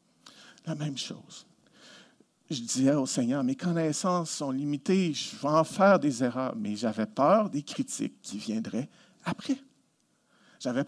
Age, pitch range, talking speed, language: 50-69, 165-235 Hz, 145 wpm, French